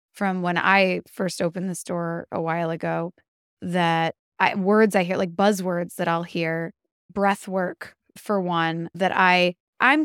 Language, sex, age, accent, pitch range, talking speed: English, female, 20-39, American, 180-225 Hz, 160 wpm